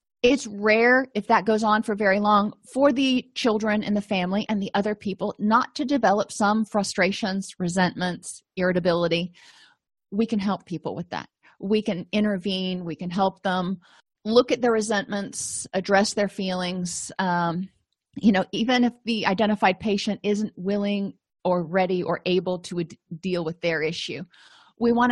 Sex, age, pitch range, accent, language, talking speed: female, 30-49, 180-220 Hz, American, English, 160 wpm